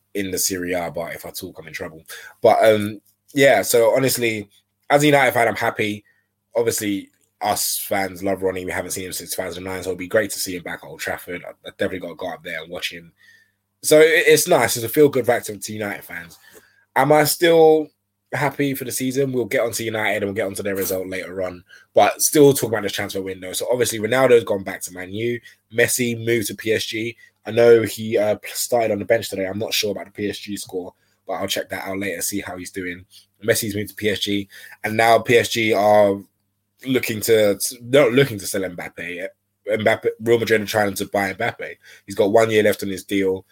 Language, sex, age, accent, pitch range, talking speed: English, male, 20-39, British, 95-120 Hz, 220 wpm